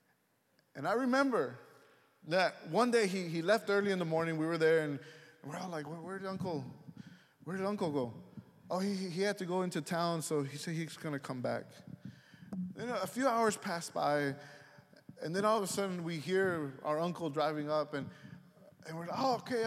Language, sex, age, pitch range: English, male, 20-39, 155-200 Hz